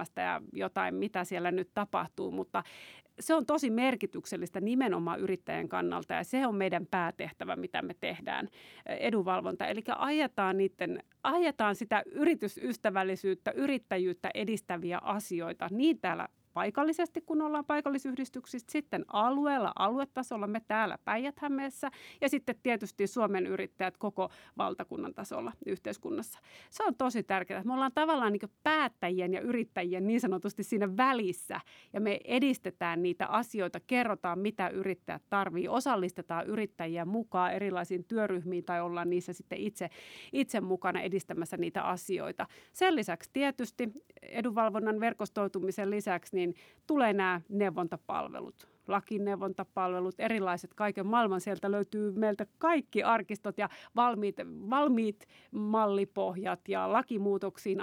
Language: Finnish